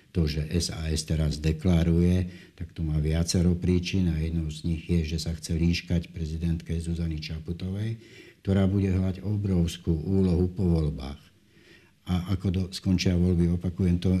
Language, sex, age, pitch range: Slovak, male, 60-79, 85-95 Hz